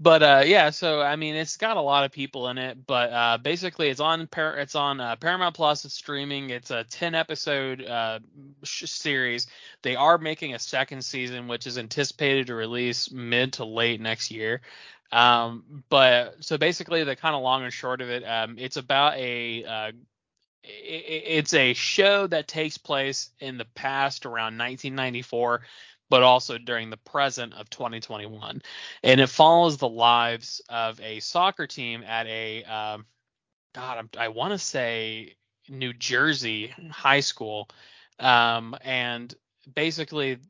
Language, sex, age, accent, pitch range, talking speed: English, male, 20-39, American, 120-150 Hz, 165 wpm